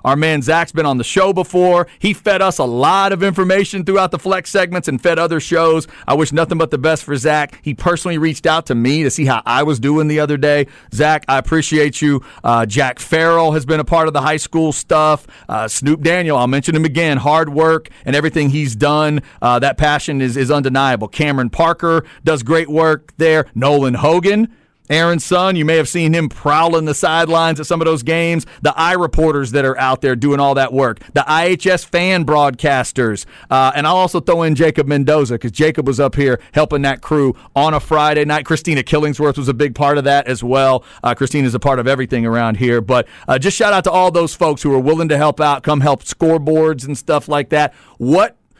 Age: 40-59